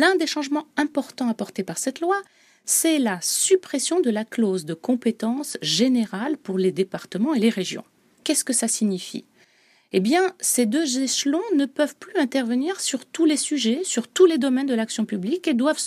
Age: 40-59